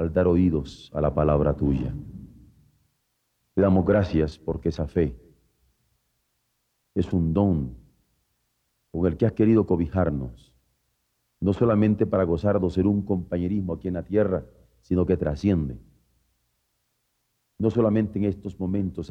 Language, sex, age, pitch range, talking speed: Spanish, male, 40-59, 70-95 Hz, 130 wpm